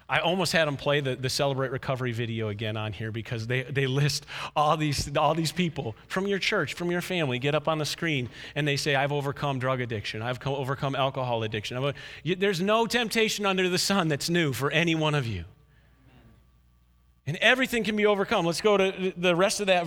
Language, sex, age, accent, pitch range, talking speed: Ukrainian, male, 40-59, American, 145-215 Hz, 215 wpm